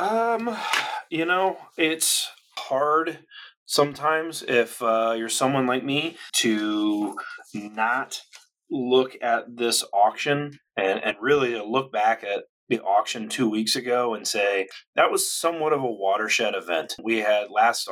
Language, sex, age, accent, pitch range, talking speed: English, male, 30-49, American, 110-130 Hz, 135 wpm